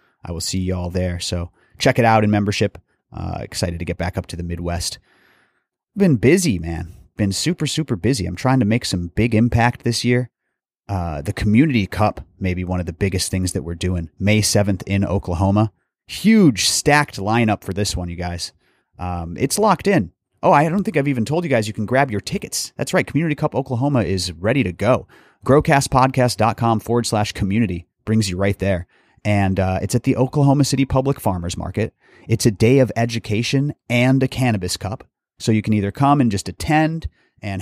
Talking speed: 200 wpm